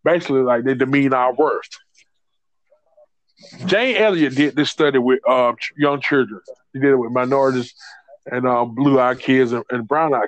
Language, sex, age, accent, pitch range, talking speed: English, male, 20-39, American, 130-155 Hz, 160 wpm